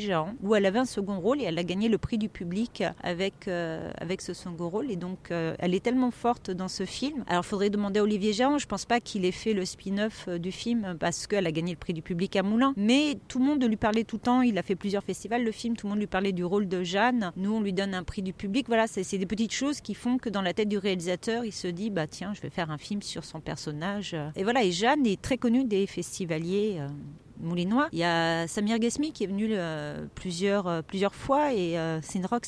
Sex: female